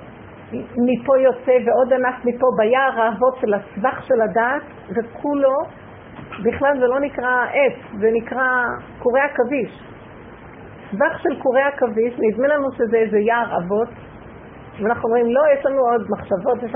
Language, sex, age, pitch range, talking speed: Hebrew, female, 50-69, 225-275 Hz, 140 wpm